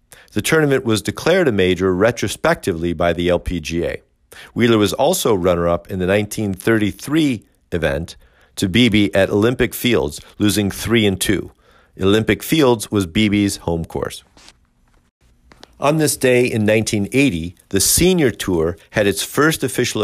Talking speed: 135 wpm